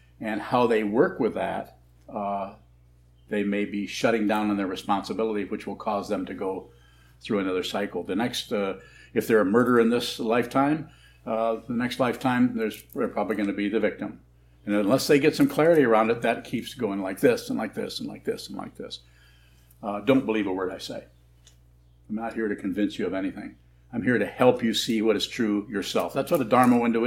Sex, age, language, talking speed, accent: male, 60-79, English, 215 wpm, American